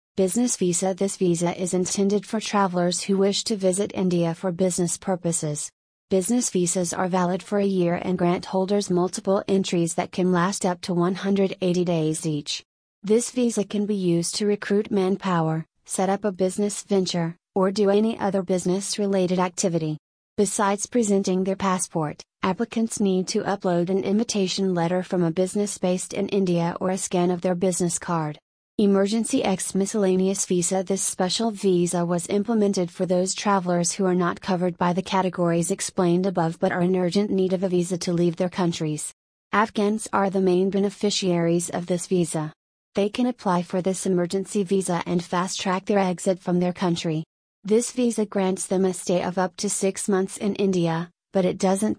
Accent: American